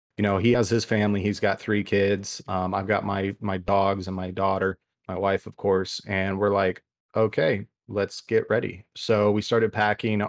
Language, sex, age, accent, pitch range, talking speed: English, male, 30-49, American, 95-110 Hz, 200 wpm